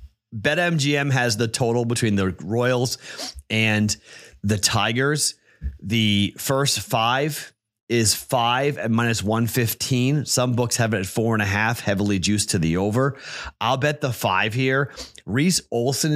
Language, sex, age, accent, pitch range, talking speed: English, male, 30-49, American, 105-130 Hz, 145 wpm